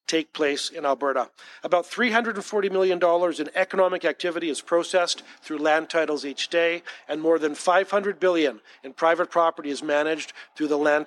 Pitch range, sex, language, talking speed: 150-185 Hz, male, English, 165 wpm